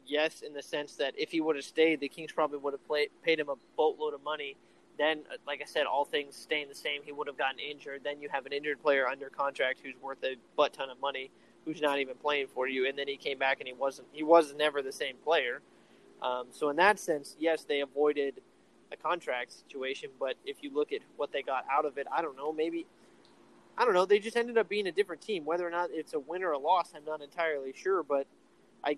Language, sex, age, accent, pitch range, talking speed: English, male, 20-39, American, 140-180 Hz, 250 wpm